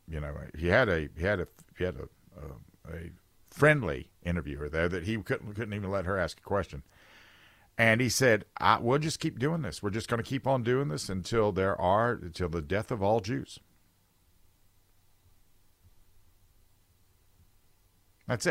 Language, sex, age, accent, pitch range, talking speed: English, male, 50-69, American, 90-125 Hz, 170 wpm